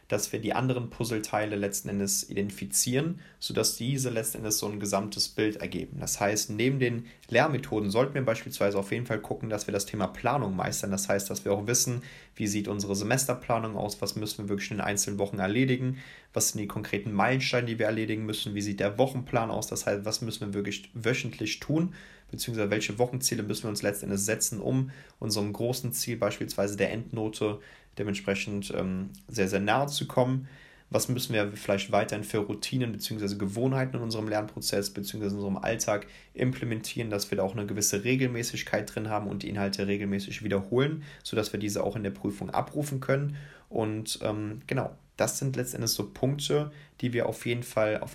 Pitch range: 100-125 Hz